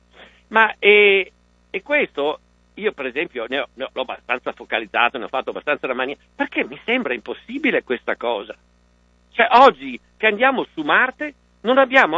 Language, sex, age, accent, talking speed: Italian, male, 50-69, native, 170 wpm